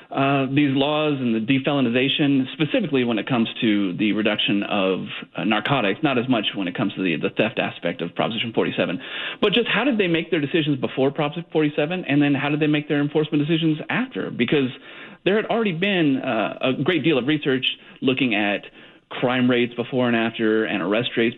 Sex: male